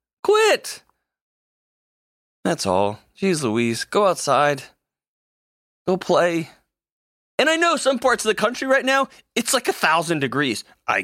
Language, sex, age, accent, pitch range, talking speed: English, male, 30-49, American, 135-220 Hz, 135 wpm